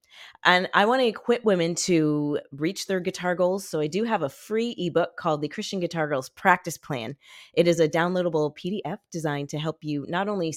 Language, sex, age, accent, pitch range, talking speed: English, female, 30-49, American, 155-195 Hz, 205 wpm